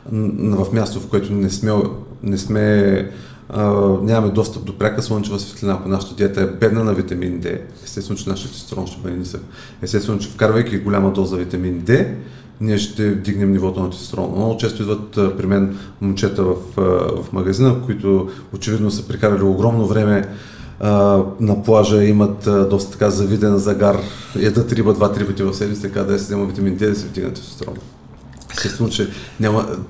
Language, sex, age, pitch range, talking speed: Bulgarian, male, 30-49, 100-115 Hz, 175 wpm